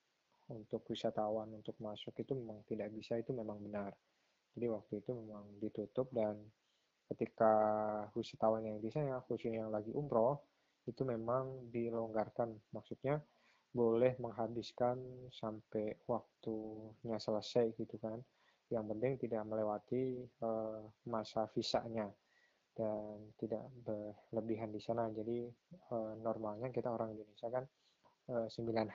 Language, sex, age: Indonesian, male, 20-39